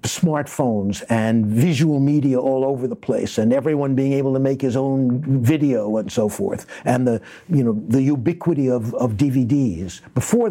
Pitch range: 120-150 Hz